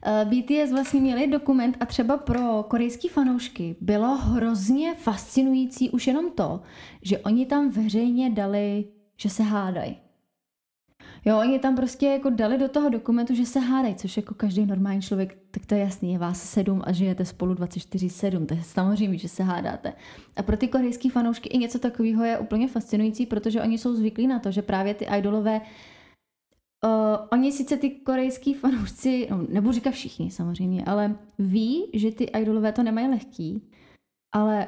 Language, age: Czech, 20-39